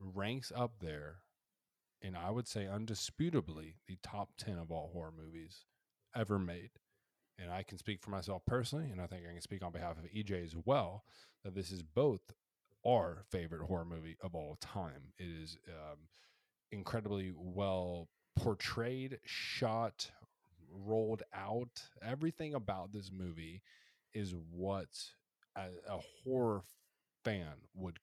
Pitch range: 85-110 Hz